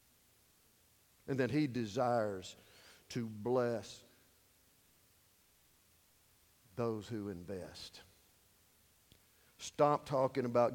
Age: 50-69